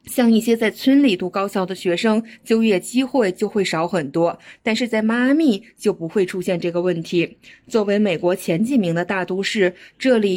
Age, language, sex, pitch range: 20-39, Chinese, female, 185-245 Hz